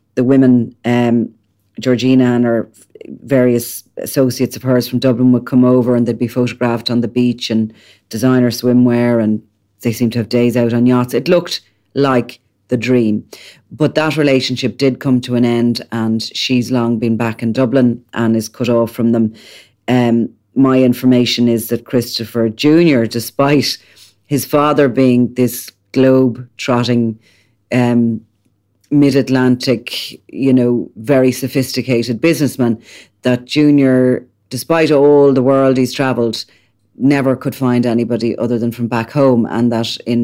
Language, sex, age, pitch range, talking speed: English, female, 40-59, 115-130 Hz, 150 wpm